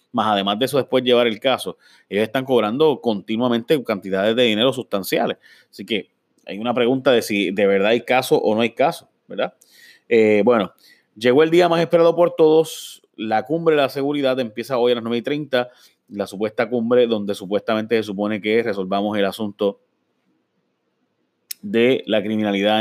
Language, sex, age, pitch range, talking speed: Spanish, male, 30-49, 105-130 Hz, 175 wpm